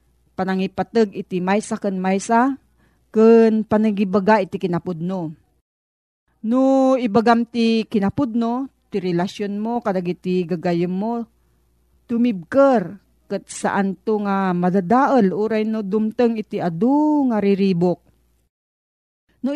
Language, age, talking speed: Filipino, 40-59, 100 wpm